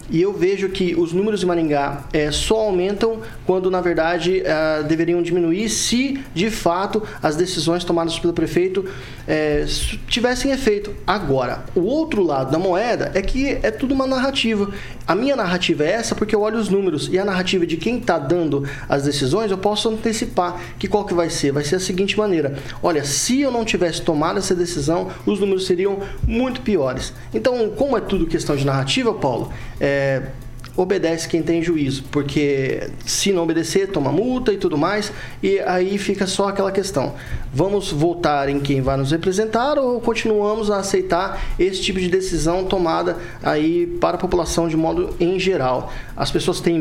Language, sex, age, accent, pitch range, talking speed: Portuguese, male, 20-39, Brazilian, 145-200 Hz, 175 wpm